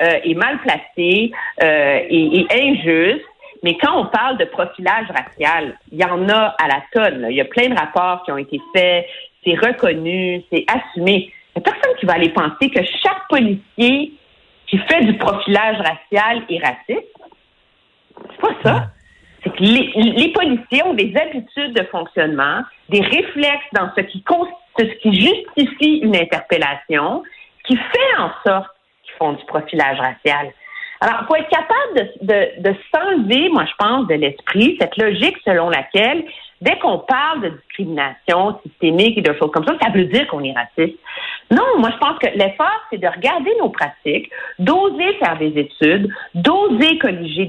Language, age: French, 50-69